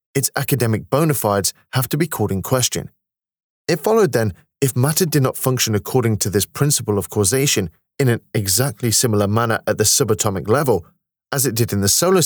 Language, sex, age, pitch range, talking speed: Urdu, male, 30-49, 100-130 Hz, 190 wpm